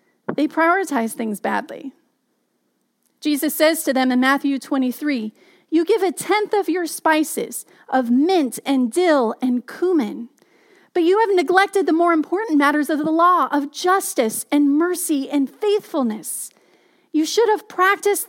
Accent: American